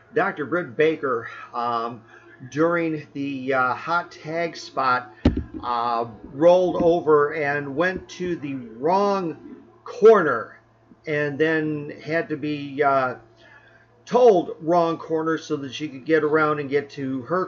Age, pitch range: 50-69, 140-165 Hz